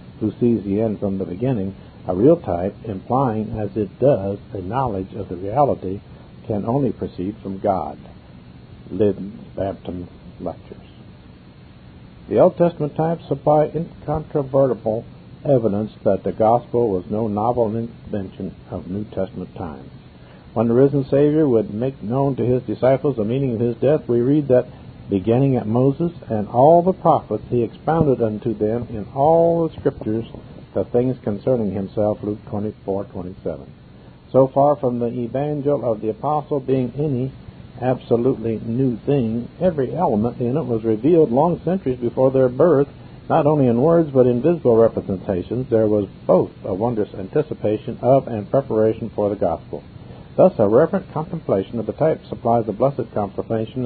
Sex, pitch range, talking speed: male, 105-135 Hz, 160 wpm